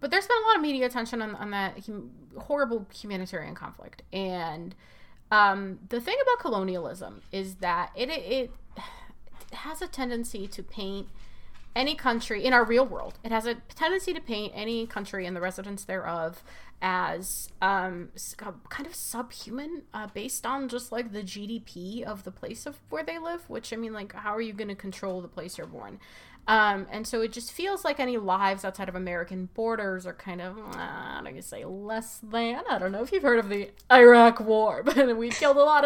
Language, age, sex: English, 20-39, female